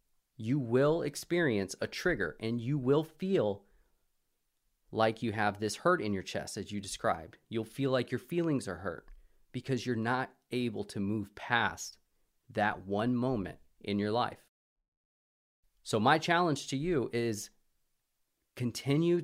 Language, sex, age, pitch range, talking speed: English, male, 30-49, 105-135 Hz, 145 wpm